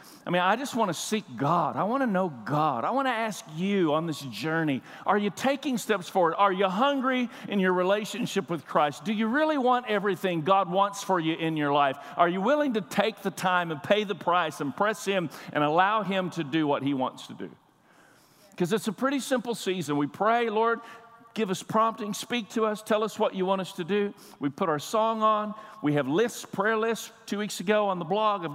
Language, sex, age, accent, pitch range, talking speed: English, male, 50-69, American, 180-225 Hz, 230 wpm